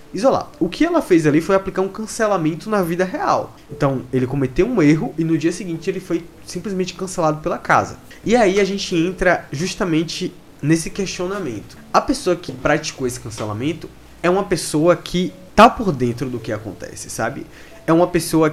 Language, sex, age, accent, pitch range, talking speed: Portuguese, male, 20-39, Brazilian, 135-180 Hz, 180 wpm